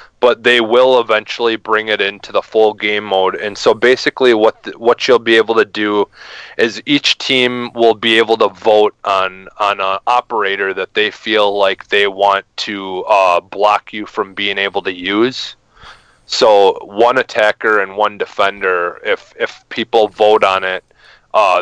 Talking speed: 170 wpm